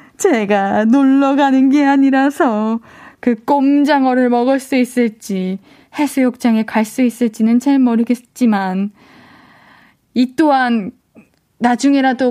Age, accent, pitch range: 20-39, native, 235-310 Hz